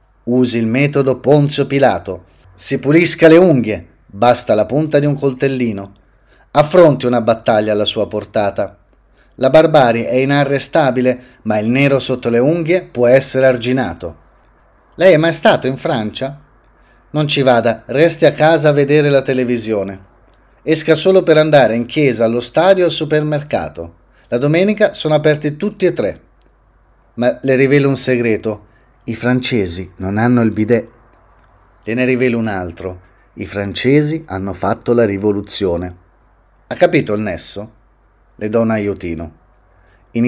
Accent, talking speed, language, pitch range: native, 145 wpm, Italian, 105-145 Hz